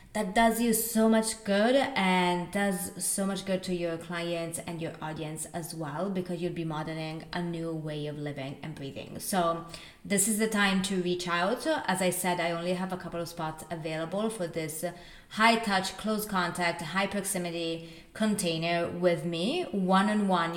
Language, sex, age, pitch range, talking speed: English, female, 20-39, 165-195 Hz, 180 wpm